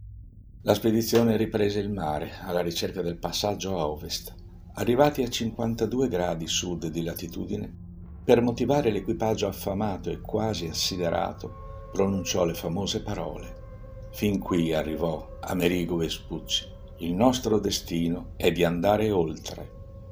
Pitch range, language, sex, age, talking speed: 85-110 Hz, Italian, male, 50-69, 120 wpm